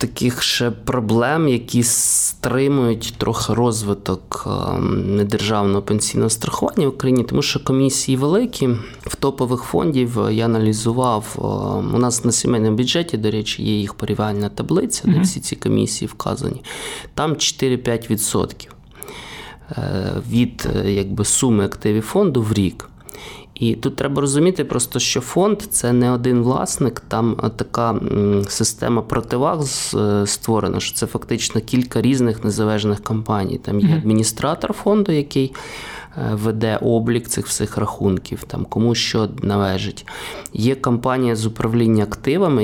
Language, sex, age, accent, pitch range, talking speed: Ukrainian, male, 20-39, native, 105-130 Hz, 125 wpm